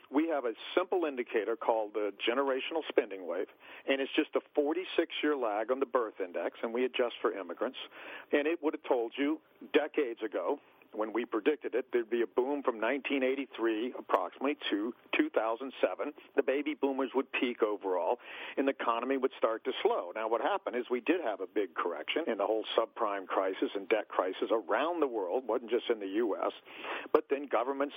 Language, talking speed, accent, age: English, 190 wpm, American, 50-69